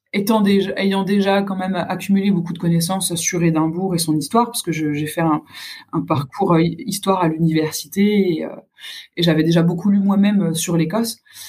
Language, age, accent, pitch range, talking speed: French, 20-39, French, 165-205 Hz, 190 wpm